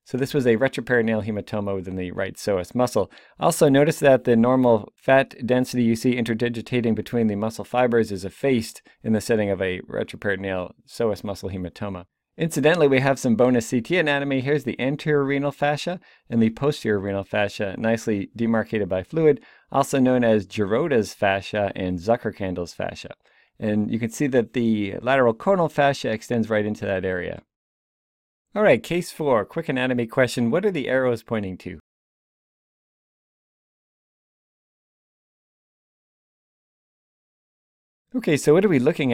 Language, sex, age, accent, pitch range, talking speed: English, male, 40-59, American, 105-140 Hz, 150 wpm